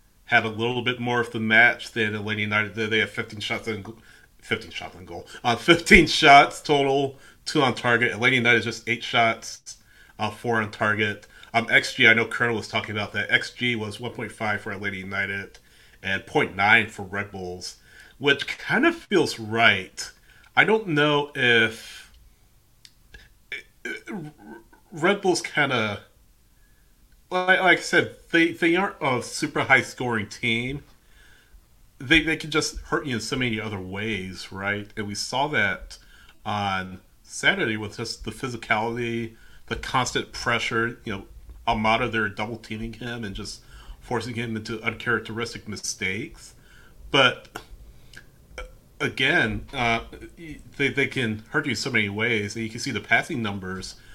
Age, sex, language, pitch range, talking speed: 30-49, male, English, 105-125 Hz, 155 wpm